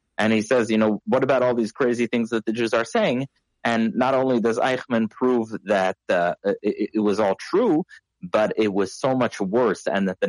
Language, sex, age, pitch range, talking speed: English, male, 30-49, 105-130 Hz, 220 wpm